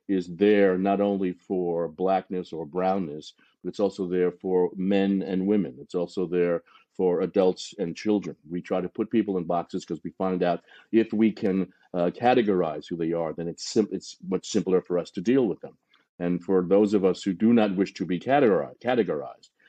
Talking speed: 200 wpm